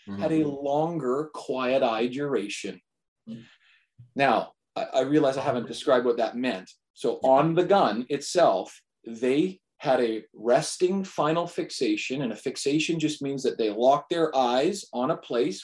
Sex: male